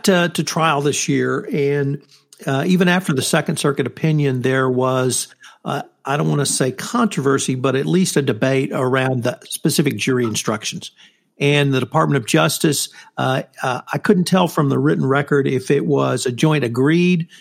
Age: 50-69